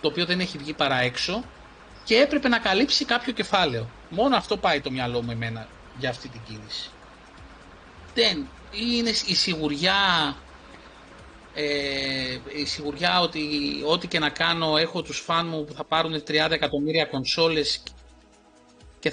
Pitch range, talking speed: 120-165 Hz, 145 wpm